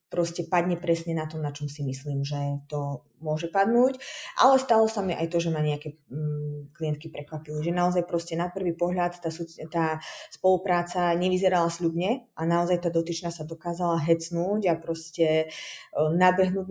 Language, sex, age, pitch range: Slovak, female, 20-39, 160-190 Hz